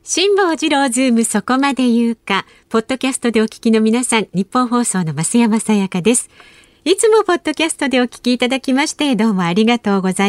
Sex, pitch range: female, 195-295 Hz